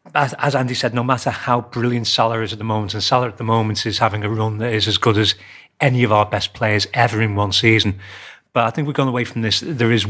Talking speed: 265 wpm